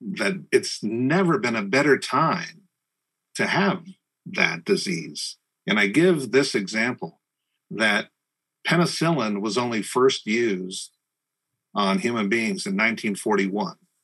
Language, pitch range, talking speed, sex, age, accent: English, 110-185 Hz, 115 wpm, male, 50-69, American